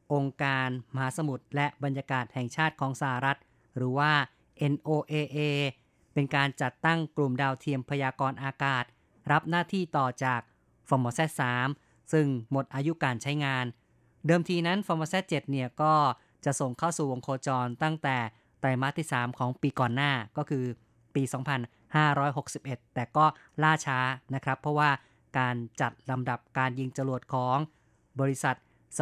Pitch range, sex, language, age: 130-150 Hz, female, Thai, 30-49